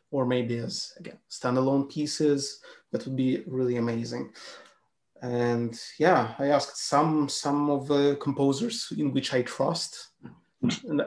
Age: 30-49